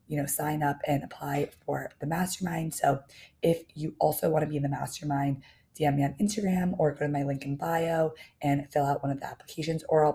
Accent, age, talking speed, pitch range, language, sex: American, 20-39, 230 wpm, 140-170 Hz, English, female